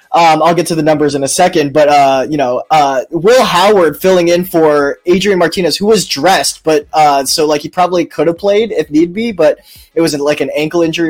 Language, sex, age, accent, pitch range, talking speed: English, male, 20-39, American, 150-185 Hz, 240 wpm